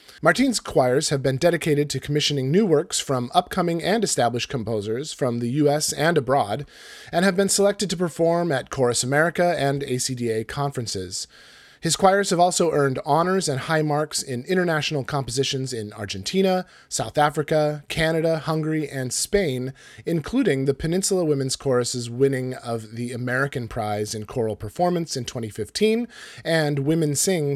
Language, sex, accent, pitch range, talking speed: English, male, American, 120-160 Hz, 150 wpm